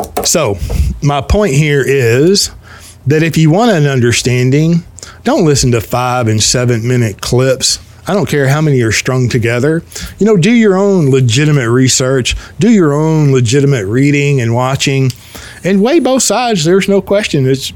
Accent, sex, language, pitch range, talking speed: American, male, English, 115-165 Hz, 165 wpm